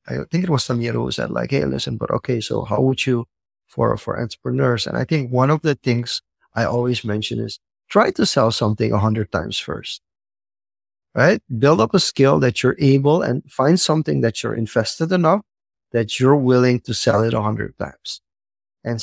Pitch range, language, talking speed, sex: 115-155 Hz, English, 200 wpm, male